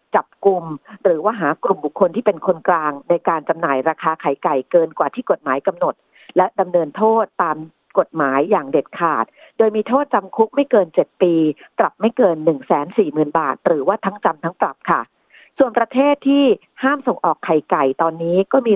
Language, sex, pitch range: Thai, female, 160-215 Hz